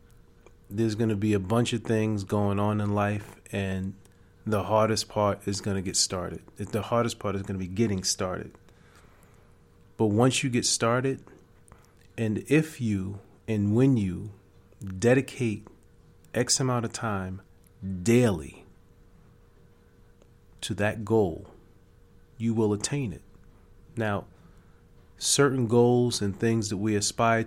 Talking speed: 135 wpm